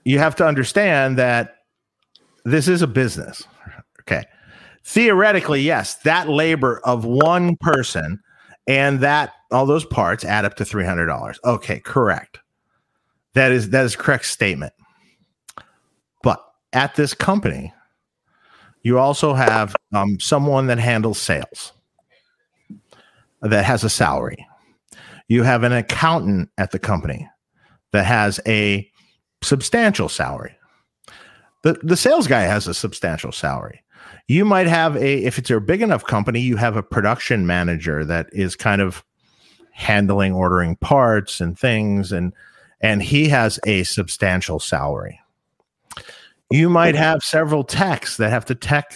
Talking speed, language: 140 wpm, English